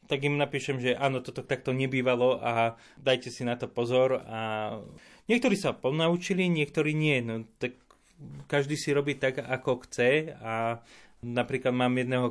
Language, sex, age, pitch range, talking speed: Slovak, male, 30-49, 125-145 Hz, 155 wpm